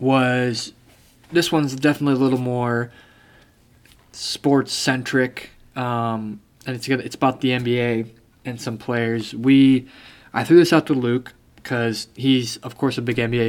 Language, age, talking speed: English, 20-39, 145 wpm